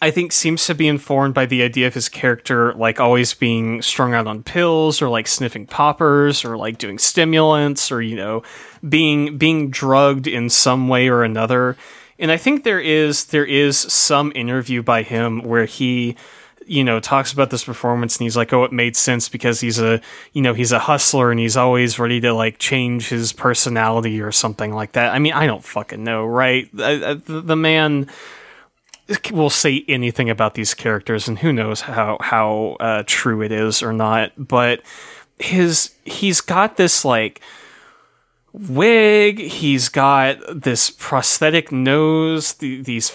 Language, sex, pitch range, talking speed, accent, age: English, male, 120-155 Hz, 175 wpm, American, 20-39